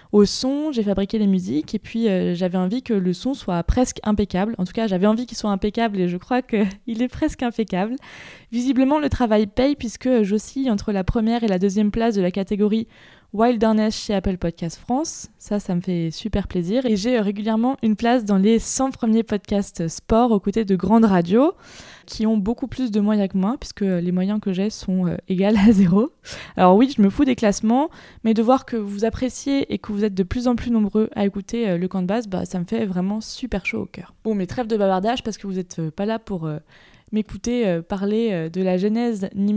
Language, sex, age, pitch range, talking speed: French, female, 20-39, 195-240 Hz, 230 wpm